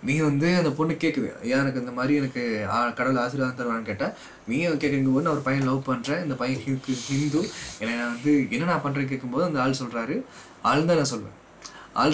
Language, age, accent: Tamil, 20-39, native